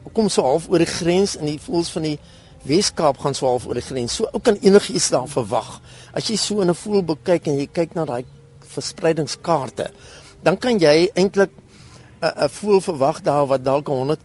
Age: 60-79